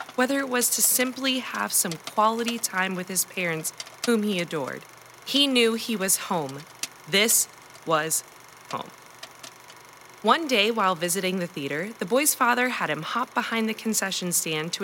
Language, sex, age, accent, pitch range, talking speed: English, female, 20-39, American, 160-240 Hz, 160 wpm